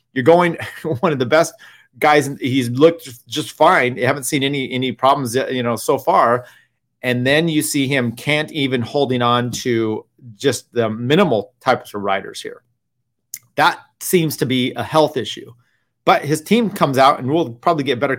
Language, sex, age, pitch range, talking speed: English, male, 30-49, 115-145 Hz, 185 wpm